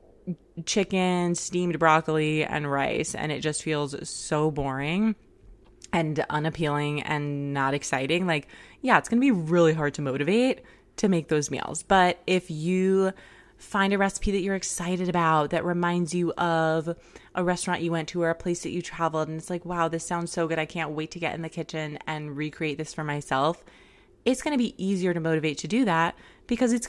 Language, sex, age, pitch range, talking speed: English, female, 20-39, 155-185 Hz, 190 wpm